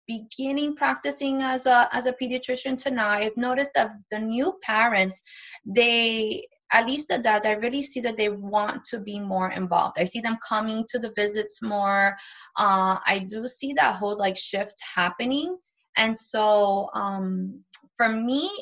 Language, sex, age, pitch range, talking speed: English, female, 20-39, 215-260 Hz, 170 wpm